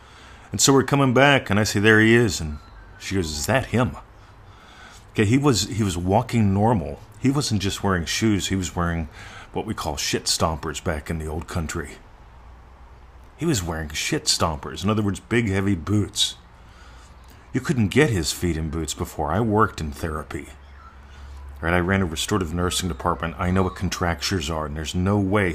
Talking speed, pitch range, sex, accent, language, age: 190 wpm, 80-100 Hz, male, American, English, 40-59